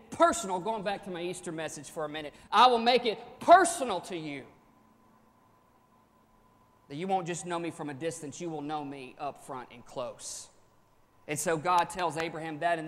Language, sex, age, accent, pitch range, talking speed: English, male, 40-59, American, 150-195 Hz, 190 wpm